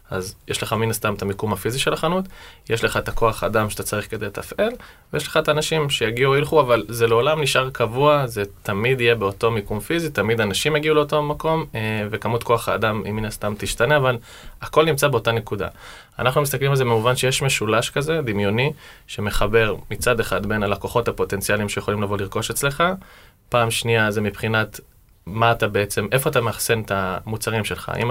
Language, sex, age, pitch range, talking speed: Hebrew, male, 20-39, 105-140 Hz, 175 wpm